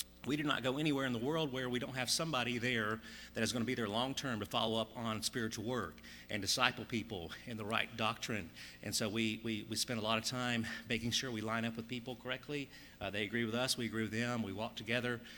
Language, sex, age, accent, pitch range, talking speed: English, male, 40-59, American, 115-135 Hz, 255 wpm